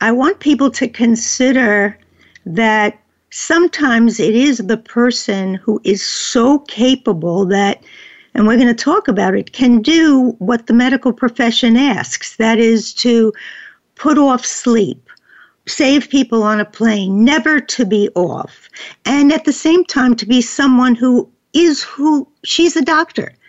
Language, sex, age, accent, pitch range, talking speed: English, female, 60-79, American, 225-285 Hz, 150 wpm